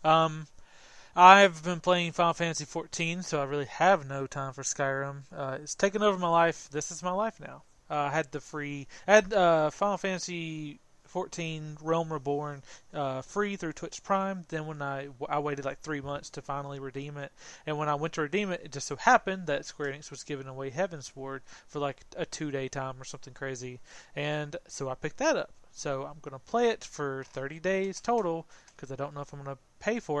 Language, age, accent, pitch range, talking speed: English, 30-49, American, 140-170 Hz, 220 wpm